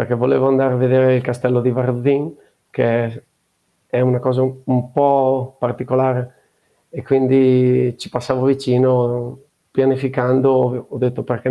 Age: 40-59